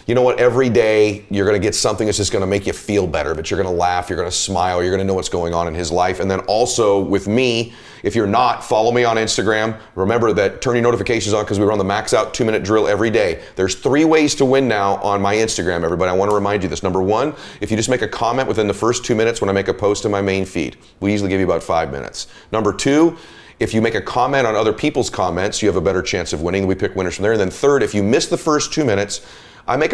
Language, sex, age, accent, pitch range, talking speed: English, male, 30-49, American, 95-120 Hz, 280 wpm